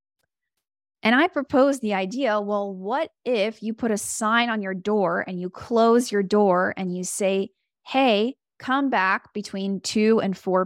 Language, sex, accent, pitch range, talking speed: English, female, American, 200-260 Hz, 170 wpm